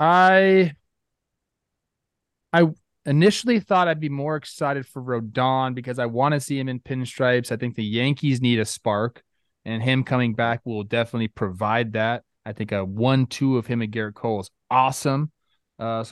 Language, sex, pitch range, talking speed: English, male, 115-150 Hz, 170 wpm